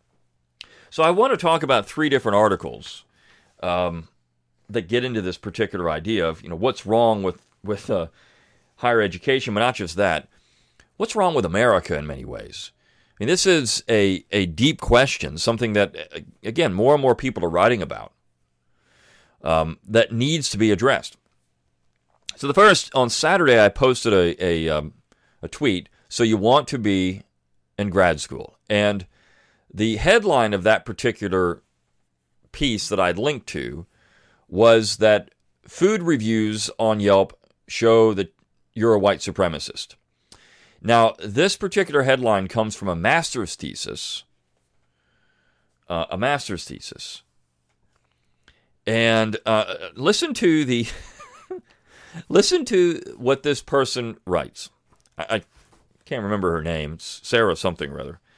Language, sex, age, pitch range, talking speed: English, male, 40-59, 80-115 Hz, 140 wpm